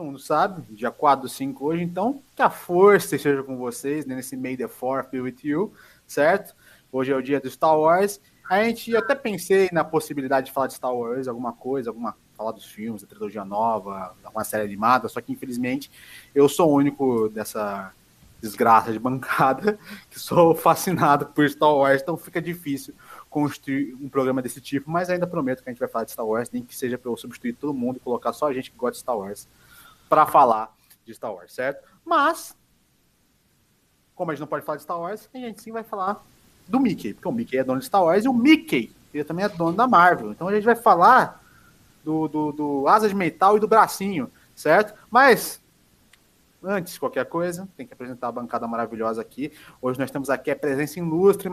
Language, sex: Portuguese, male